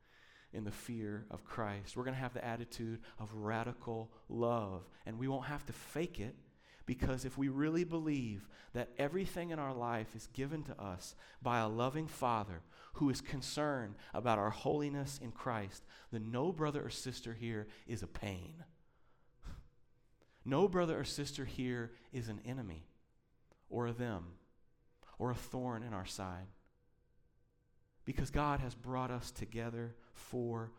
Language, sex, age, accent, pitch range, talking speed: English, male, 40-59, American, 110-140 Hz, 155 wpm